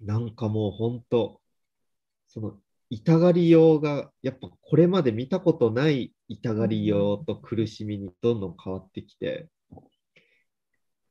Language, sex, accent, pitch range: Japanese, male, native, 105-160 Hz